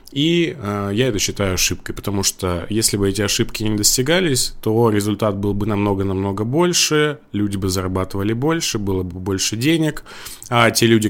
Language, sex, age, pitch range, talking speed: Russian, male, 20-39, 100-130 Hz, 160 wpm